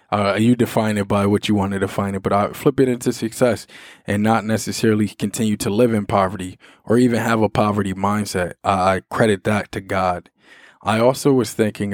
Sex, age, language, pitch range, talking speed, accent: male, 20-39, English, 100-115 Hz, 200 wpm, American